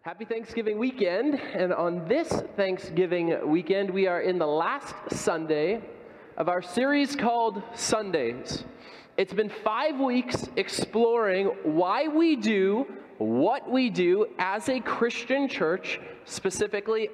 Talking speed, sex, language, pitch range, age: 125 wpm, male, English, 195-245 Hz, 20-39